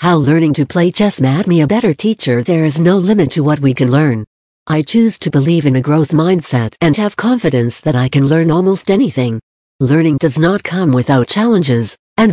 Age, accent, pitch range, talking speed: 60-79, American, 135-180 Hz, 210 wpm